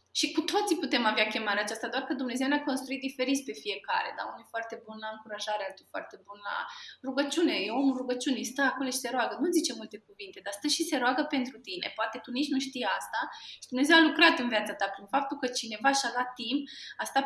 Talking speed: 240 wpm